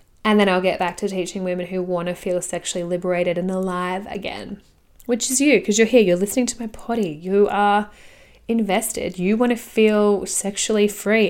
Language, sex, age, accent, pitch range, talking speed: English, female, 10-29, Australian, 180-215 Hz, 195 wpm